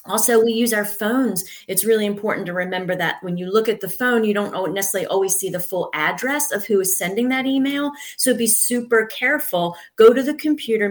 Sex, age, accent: female, 30-49, American